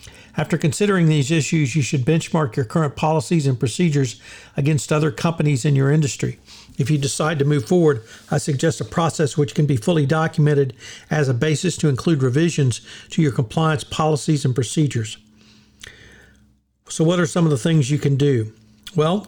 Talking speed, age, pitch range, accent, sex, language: 175 wpm, 50-69, 135-160 Hz, American, male, English